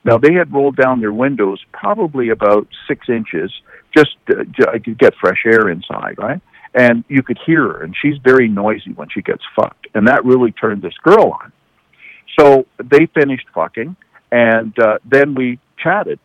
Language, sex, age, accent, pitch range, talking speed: English, male, 60-79, American, 115-140 Hz, 180 wpm